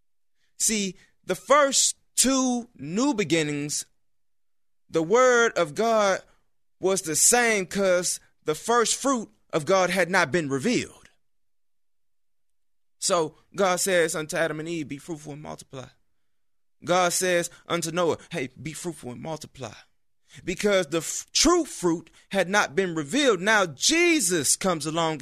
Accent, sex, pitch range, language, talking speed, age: American, male, 150-210 Hz, English, 130 wpm, 30-49